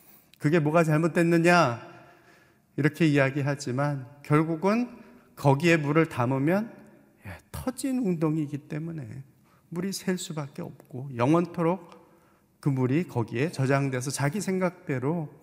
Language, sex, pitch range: Korean, male, 120-155 Hz